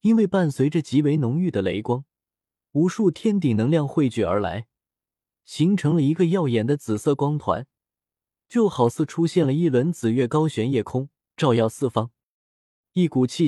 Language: Chinese